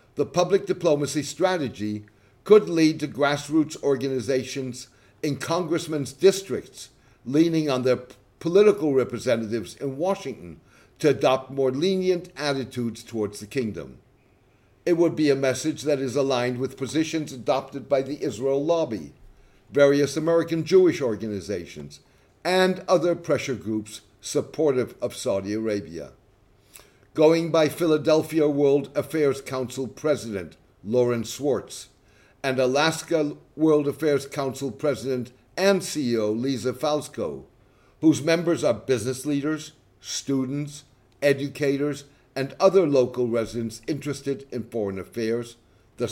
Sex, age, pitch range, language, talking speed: male, 60-79, 115-155 Hz, English, 115 wpm